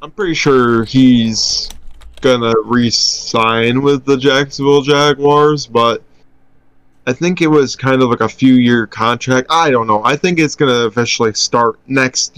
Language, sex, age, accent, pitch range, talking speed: English, male, 20-39, American, 115-135 Hz, 160 wpm